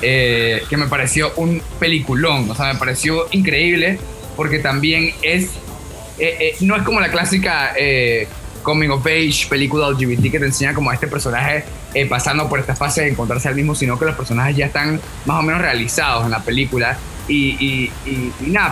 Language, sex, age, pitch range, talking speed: Spanish, male, 20-39, 130-160 Hz, 195 wpm